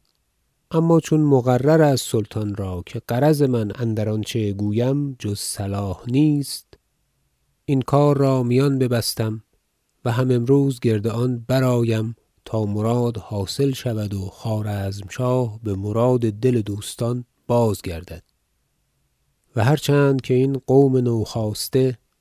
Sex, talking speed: male, 115 wpm